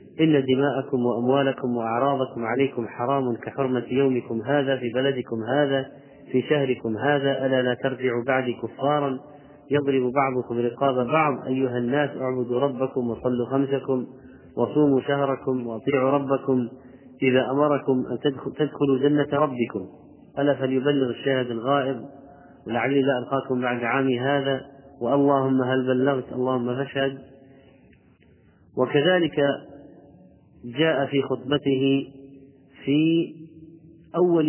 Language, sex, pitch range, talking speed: Arabic, male, 130-140 Hz, 105 wpm